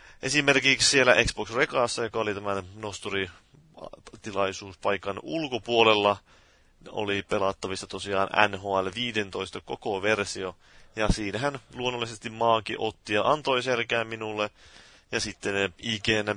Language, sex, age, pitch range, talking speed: Finnish, male, 30-49, 95-115 Hz, 100 wpm